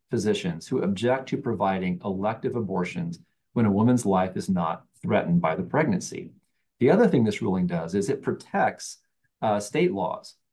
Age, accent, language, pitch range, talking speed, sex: 40-59, American, English, 105-150 Hz, 165 wpm, male